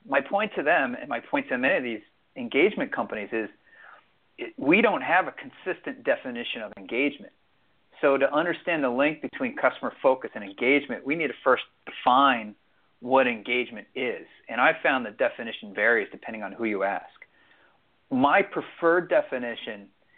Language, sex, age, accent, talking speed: English, male, 40-59, American, 165 wpm